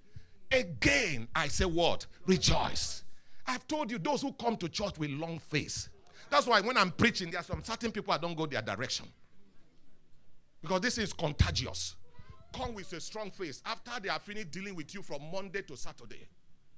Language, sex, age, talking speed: English, male, 50-69, 180 wpm